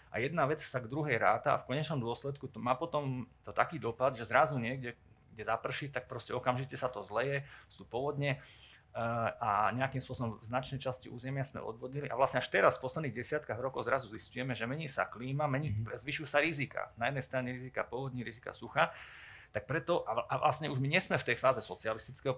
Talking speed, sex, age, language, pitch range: 205 wpm, male, 30-49, Slovak, 115-140 Hz